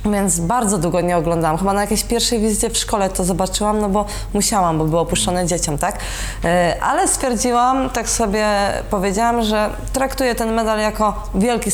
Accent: native